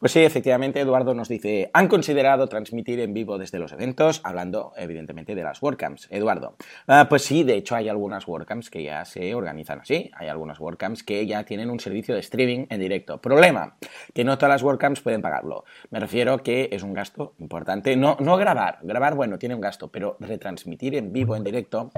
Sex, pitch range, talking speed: male, 95-125 Hz, 200 wpm